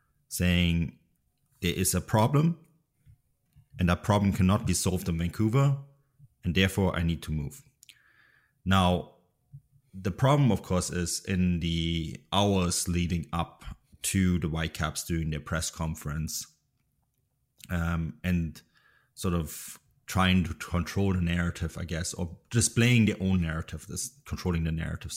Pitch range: 80-100 Hz